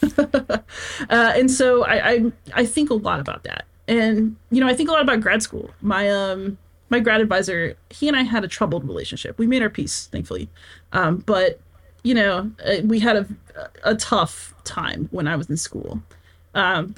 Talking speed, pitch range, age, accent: 190 wpm, 150-225 Hz, 30-49, American